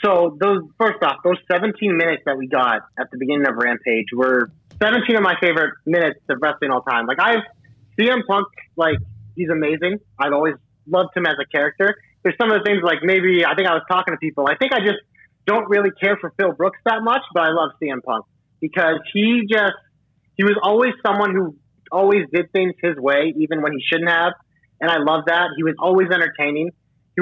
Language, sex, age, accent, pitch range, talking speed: English, male, 30-49, American, 150-190 Hz, 215 wpm